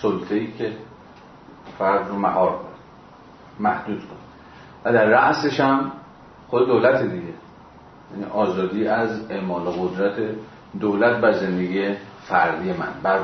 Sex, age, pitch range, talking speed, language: male, 40-59, 95-115 Hz, 120 wpm, Persian